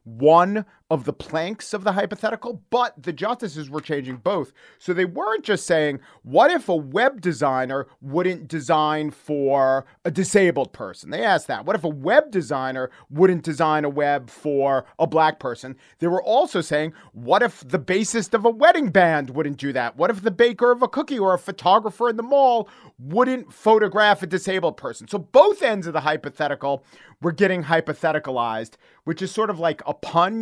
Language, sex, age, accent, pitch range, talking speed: English, male, 40-59, American, 140-200 Hz, 185 wpm